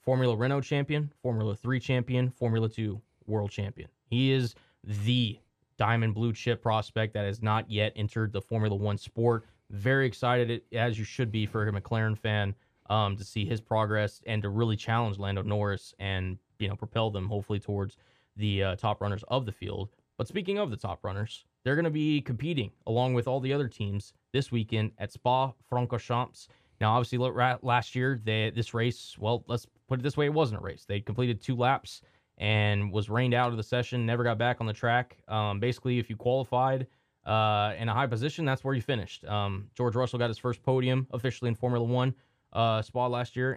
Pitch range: 105-125 Hz